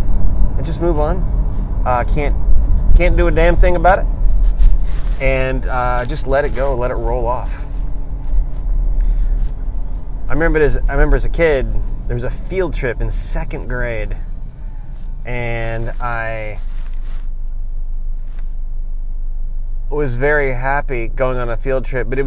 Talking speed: 145 wpm